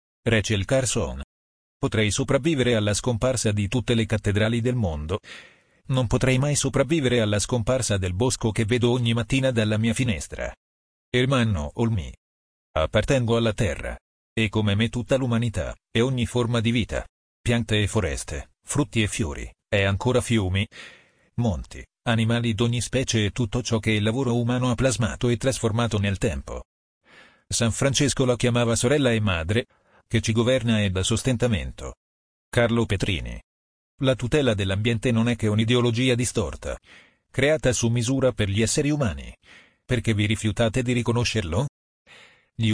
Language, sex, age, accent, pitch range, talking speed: Italian, male, 40-59, native, 105-125 Hz, 145 wpm